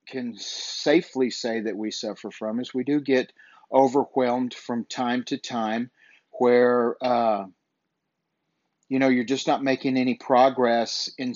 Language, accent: English, American